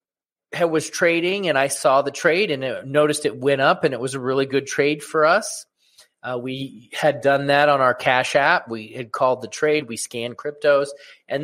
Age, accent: 30-49, American